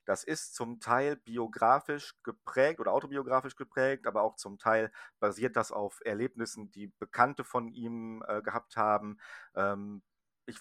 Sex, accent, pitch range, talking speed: male, German, 105-125 Hz, 145 wpm